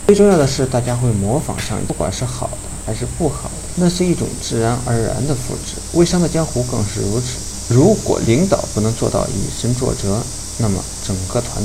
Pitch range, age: 100-130 Hz, 50-69